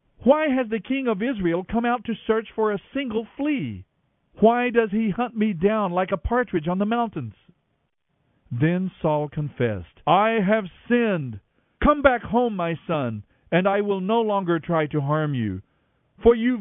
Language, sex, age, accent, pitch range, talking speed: English, male, 50-69, American, 155-230 Hz, 175 wpm